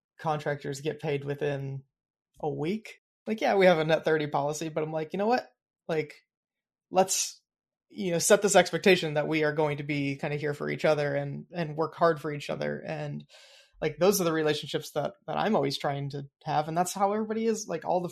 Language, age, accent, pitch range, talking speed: English, 20-39, American, 150-180 Hz, 220 wpm